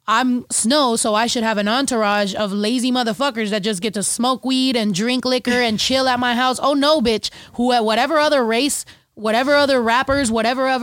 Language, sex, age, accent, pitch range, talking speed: English, female, 20-39, American, 210-255 Hz, 205 wpm